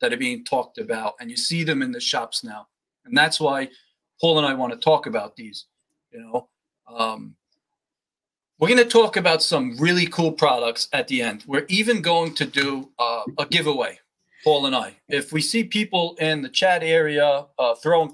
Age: 40-59